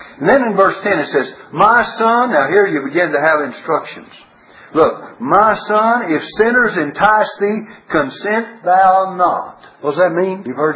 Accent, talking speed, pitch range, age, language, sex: American, 180 wpm, 155-225 Hz, 60-79, English, male